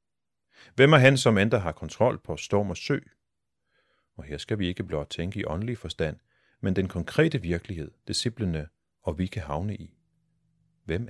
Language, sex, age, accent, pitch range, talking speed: Danish, male, 30-49, native, 80-110 Hz, 175 wpm